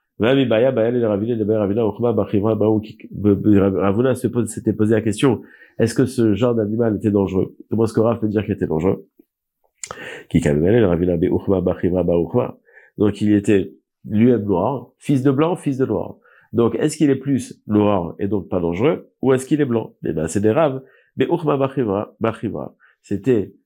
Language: French